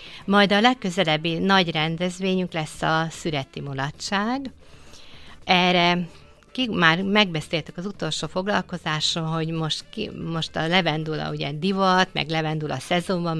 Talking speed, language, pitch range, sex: 120 wpm, Hungarian, 160-195 Hz, female